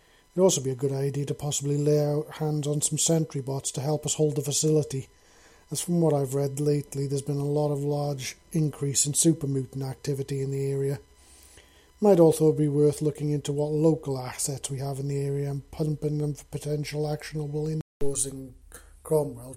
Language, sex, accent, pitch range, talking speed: English, male, British, 130-150 Hz, 195 wpm